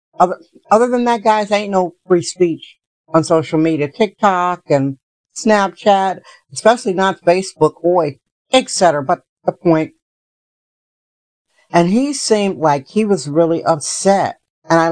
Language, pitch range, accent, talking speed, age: English, 160-195 Hz, American, 135 wpm, 60-79